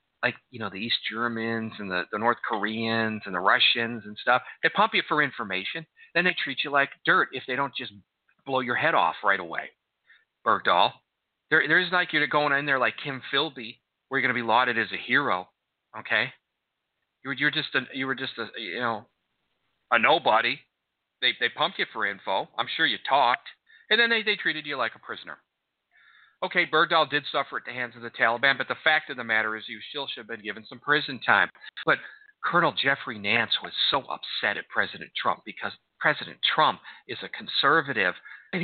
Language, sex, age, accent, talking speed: English, male, 40-59, American, 205 wpm